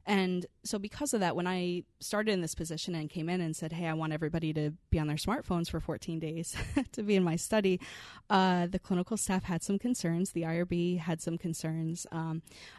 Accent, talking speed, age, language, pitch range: American, 215 wpm, 20-39, English, 160-180 Hz